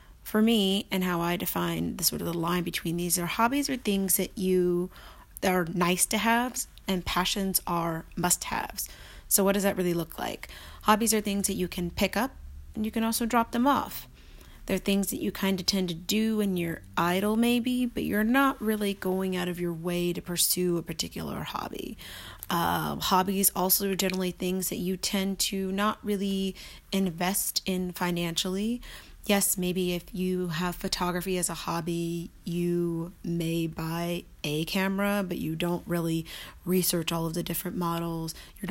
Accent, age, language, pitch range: American, 30-49, English, 170-195 Hz